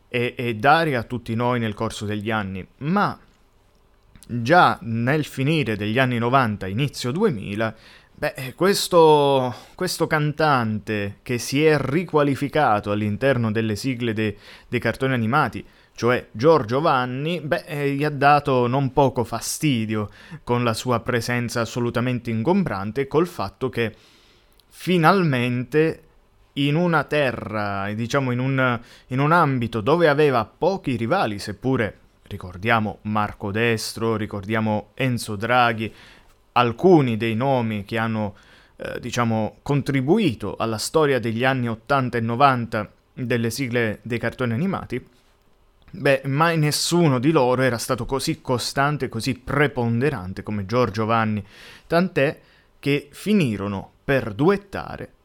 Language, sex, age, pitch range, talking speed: Italian, male, 20-39, 110-140 Hz, 120 wpm